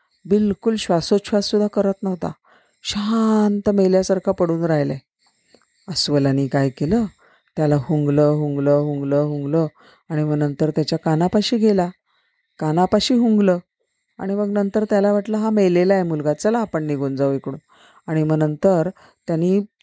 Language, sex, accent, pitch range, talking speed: Marathi, female, native, 155-205 Hz, 130 wpm